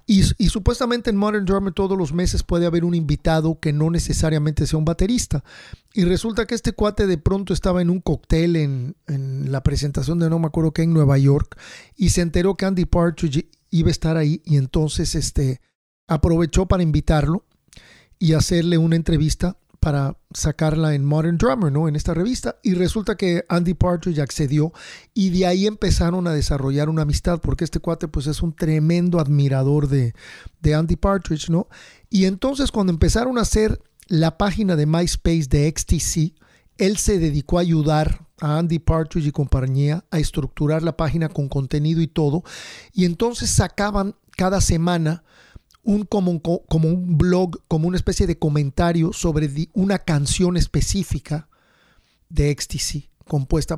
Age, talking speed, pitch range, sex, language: 40-59, 170 wpm, 155-185 Hz, male, English